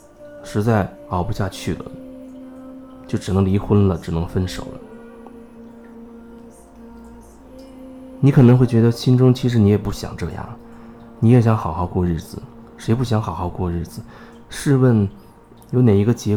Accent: native